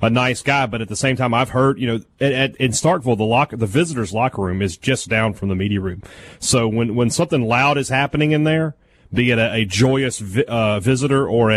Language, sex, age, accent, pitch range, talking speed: English, male, 30-49, American, 110-145 Hz, 230 wpm